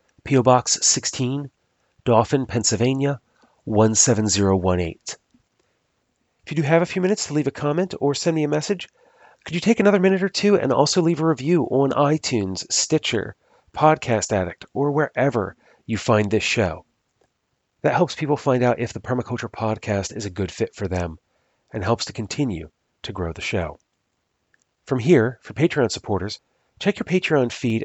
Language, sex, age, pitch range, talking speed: English, male, 30-49, 110-145 Hz, 165 wpm